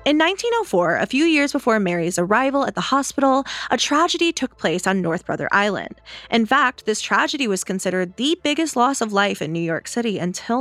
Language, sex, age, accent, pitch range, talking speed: English, female, 20-39, American, 175-245 Hz, 200 wpm